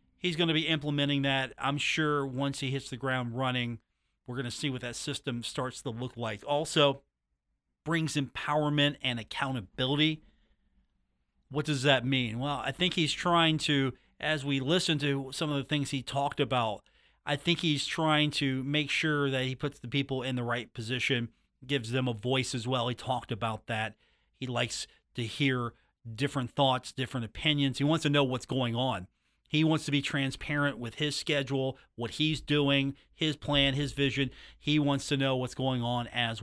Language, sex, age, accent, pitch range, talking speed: English, male, 40-59, American, 120-145 Hz, 190 wpm